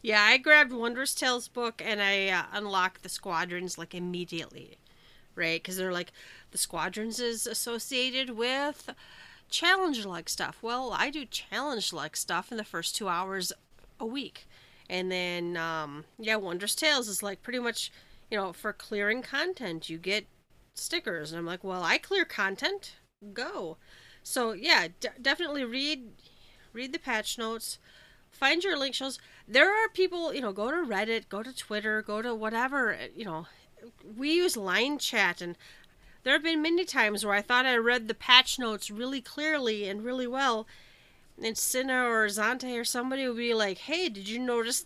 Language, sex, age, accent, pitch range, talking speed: English, female, 30-49, American, 200-265 Hz, 170 wpm